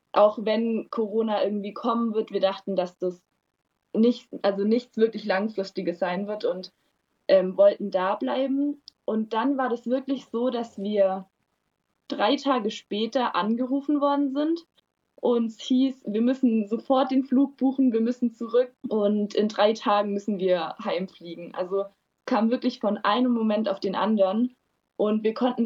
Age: 20-39